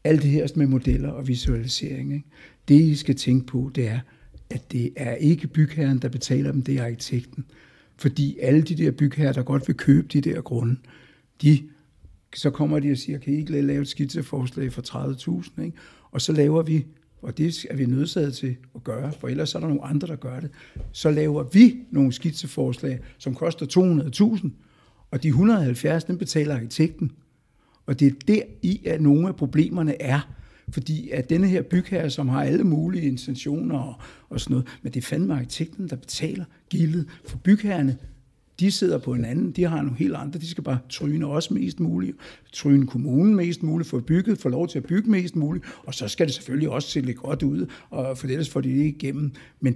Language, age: Danish, 60-79